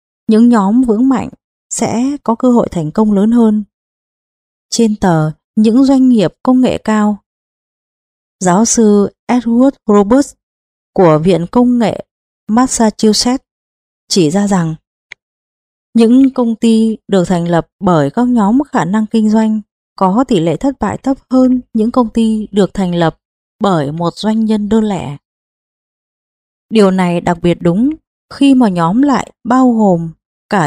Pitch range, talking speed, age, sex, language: 190-245 Hz, 150 wpm, 20-39, female, Vietnamese